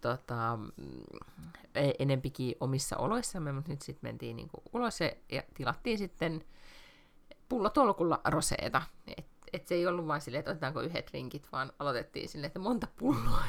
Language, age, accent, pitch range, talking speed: Finnish, 30-49, native, 155-205 Hz, 140 wpm